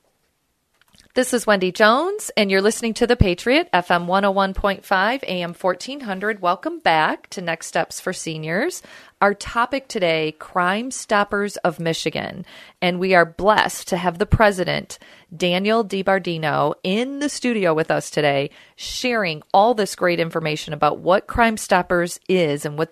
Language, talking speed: English, 145 wpm